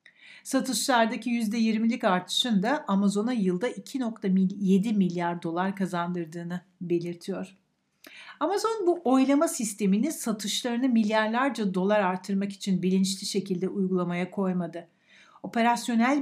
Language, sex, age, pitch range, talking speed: Turkish, female, 60-79, 185-240 Hz, 95 wpm